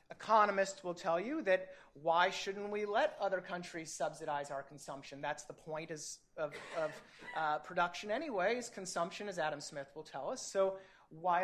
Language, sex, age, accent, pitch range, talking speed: English, male, 30-49, American, 165-210 Hz, 170 wpm